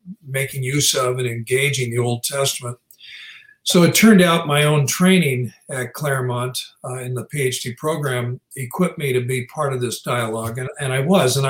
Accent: American